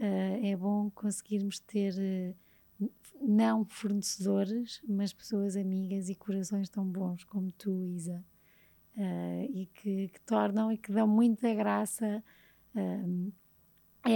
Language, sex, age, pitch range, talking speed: Portuguese, female, 20-39, 200-230 Hz, 125 wpm